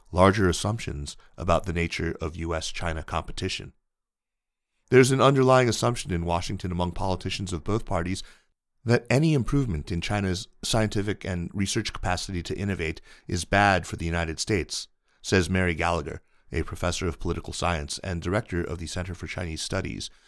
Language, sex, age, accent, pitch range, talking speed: English, male, 40-59, American, 85-100 Hz, 155 wpm